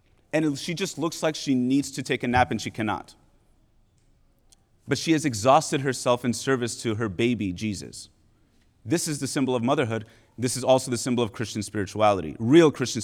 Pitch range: 115-140 Hz